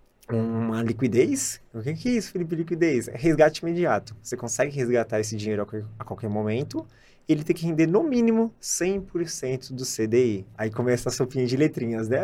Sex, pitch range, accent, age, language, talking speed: male, 115-155 Hz, Brazilian, 20-39, Portuguese, 175 wpm